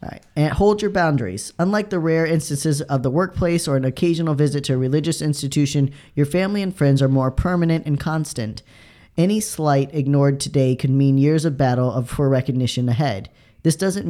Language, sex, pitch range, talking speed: English, male, 130-155 Hz, 185 wpm